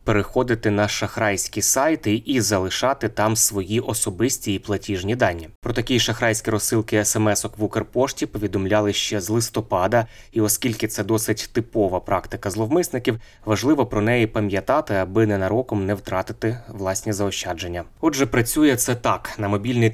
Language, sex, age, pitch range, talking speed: Ukrainian, male, 20-39, 100-115 Hz, 140 wpm